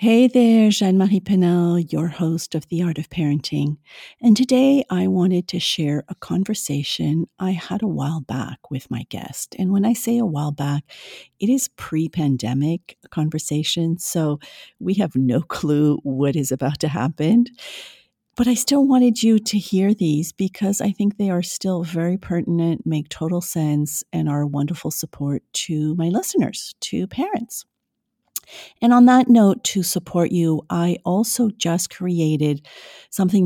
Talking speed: 160 wpm